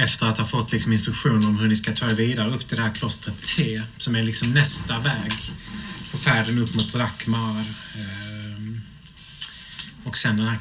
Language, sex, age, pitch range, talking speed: Swedish, male, 30-49, 110-140 Hz, 185 wpm